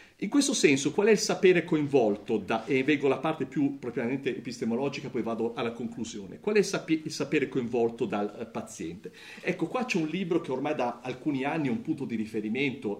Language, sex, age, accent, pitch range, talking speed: Italian, male, 50-69, native, 135-210 Hz, 195 wpm